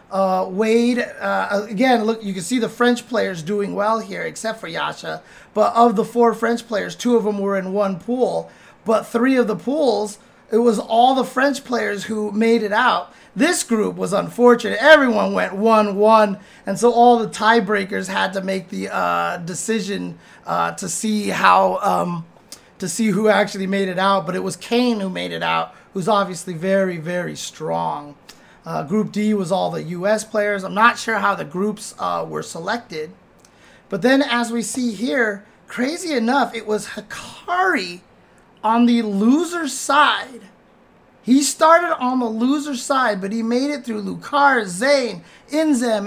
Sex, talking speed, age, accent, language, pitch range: male, 175 wpm, 30-49, American, English, 200-245 Hz